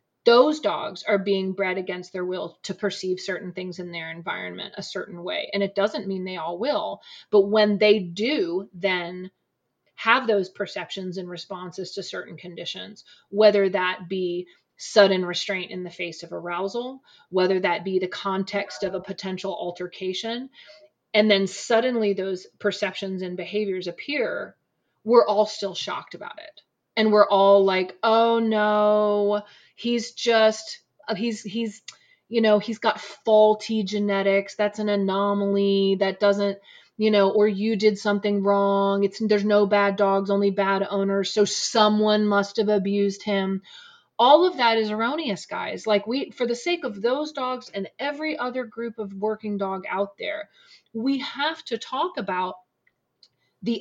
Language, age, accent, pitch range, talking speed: English, 30-49, American, 195-225 Hz, 160 wpm